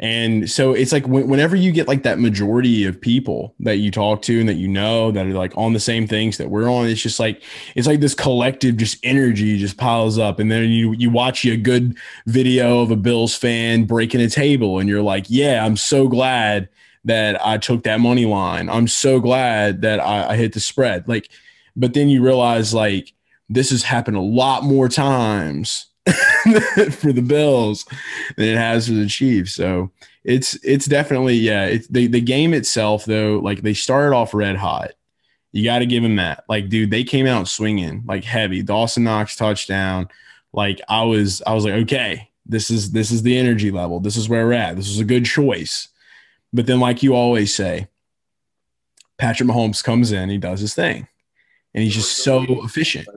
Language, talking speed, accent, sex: English, 200 wpm, American, male